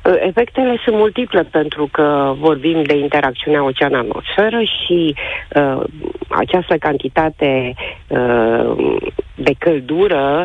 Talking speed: 90 wpm